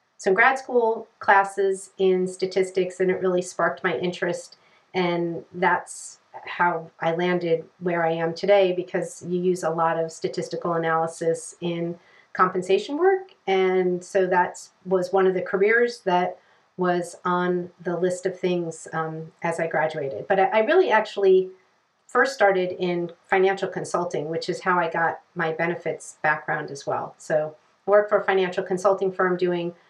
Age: 40-59